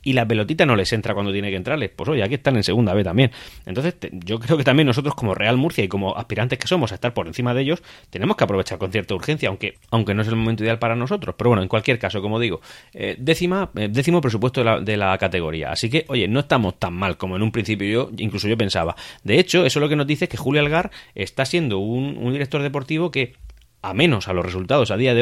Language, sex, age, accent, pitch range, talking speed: English, male, 30-49, Spanish, 100-140 Hz, 265 wpm